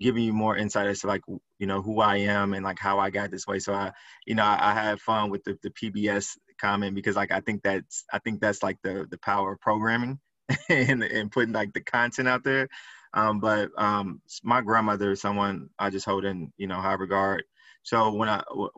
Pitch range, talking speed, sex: 100-110 Hz, 225 wpm, male